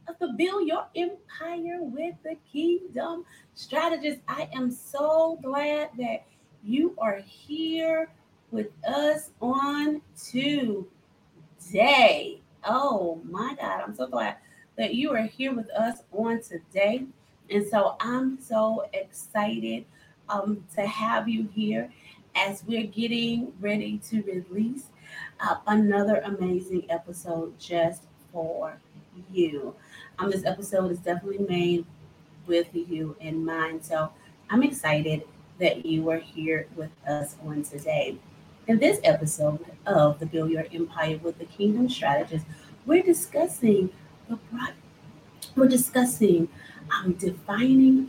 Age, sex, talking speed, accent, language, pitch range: 30-49, female, 120 wpm, American, English, 165-255 Hz